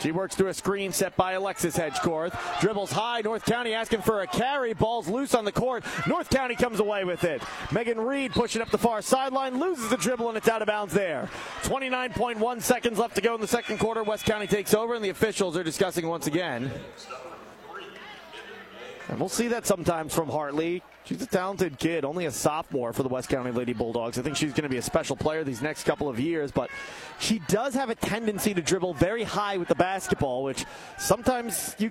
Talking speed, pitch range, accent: 215 wpm, 175-235 Hz, American